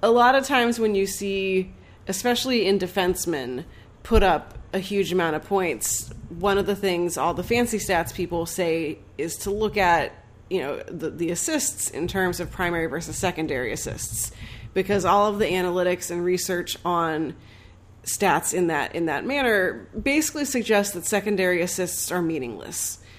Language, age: English, 30-49